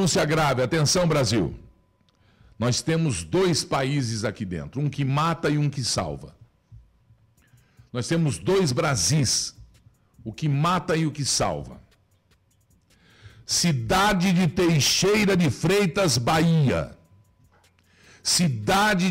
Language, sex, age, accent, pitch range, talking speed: Portuguese, male, 60-79, Brazilian, 120-180 Hz, 110 wpm